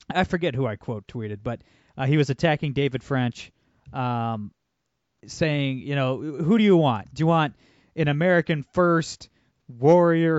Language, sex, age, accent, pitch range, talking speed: English, male, 20-39, American, 130-170 Hz, 160 wpm